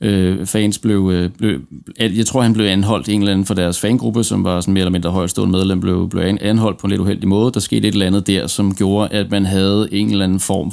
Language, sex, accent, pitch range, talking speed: Danish, male, native, 95-110 Hz, 250 wpm